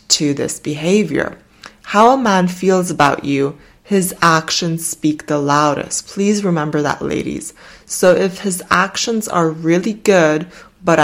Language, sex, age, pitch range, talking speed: English, female, 20-39, 155-190 Hz, 140 wpm